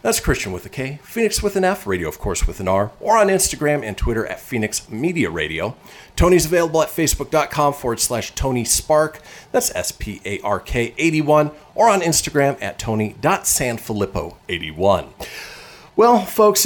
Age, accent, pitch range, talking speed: 40-59, American, 100-155 Hz, 150 wpm